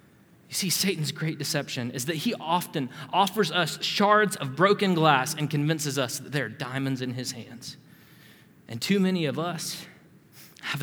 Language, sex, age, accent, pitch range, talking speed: English, male, 20-39, American, 130-170 Hz, 170 wpm